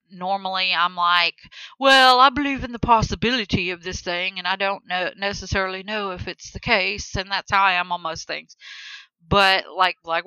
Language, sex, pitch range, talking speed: English, female, 170-200 Hz, 195 wpm